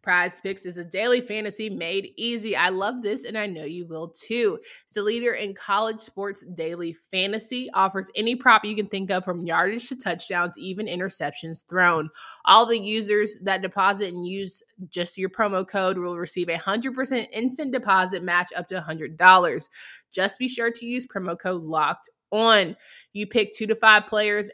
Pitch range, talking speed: 180-225 Hz, 180 wpm